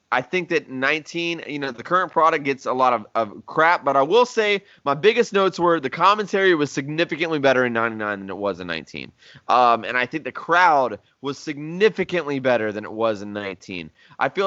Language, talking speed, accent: English, 210 wpm, American